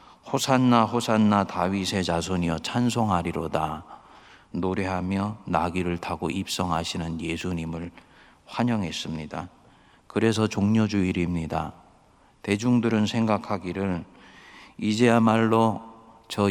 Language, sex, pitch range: Korean, male, 90-110 Hz